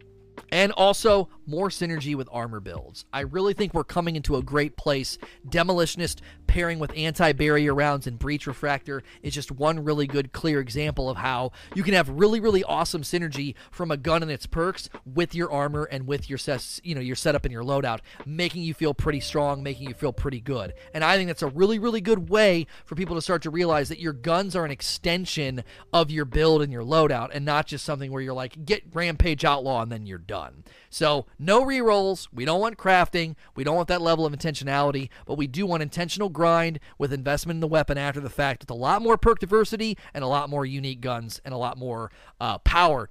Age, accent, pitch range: 30-49, American, 135-175 Hz